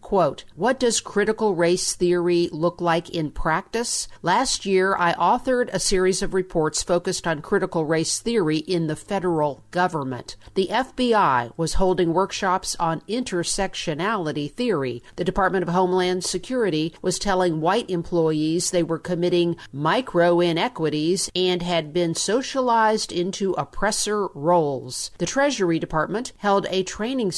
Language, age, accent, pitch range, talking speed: English, 50-69, American, 165-195 Hz, 130 wpm